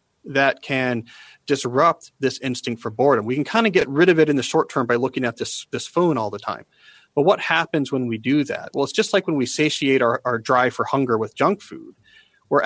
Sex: male